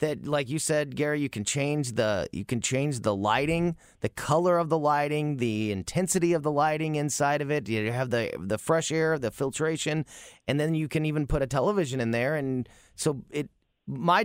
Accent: American